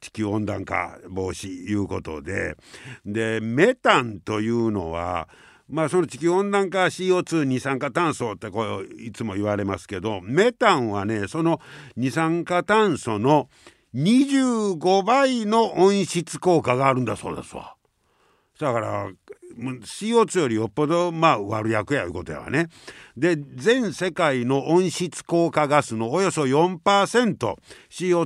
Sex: male